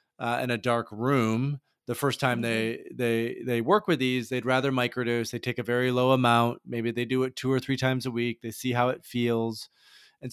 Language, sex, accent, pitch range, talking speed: English, male, American, 115-130 Hz, 225 wpm